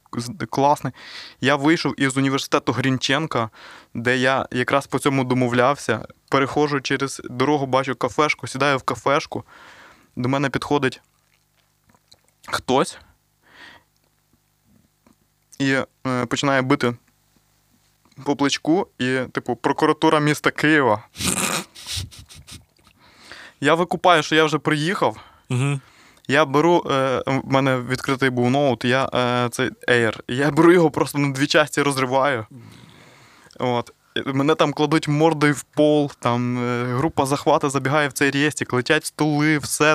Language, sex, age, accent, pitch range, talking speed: Ukrainian, male, 20-39, native, 130-150 Hz, 115 wpm